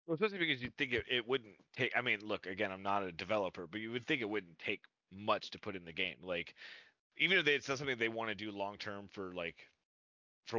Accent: American